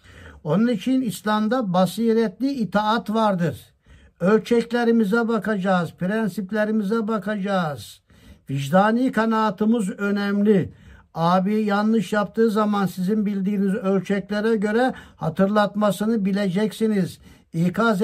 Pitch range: 190-240 Hz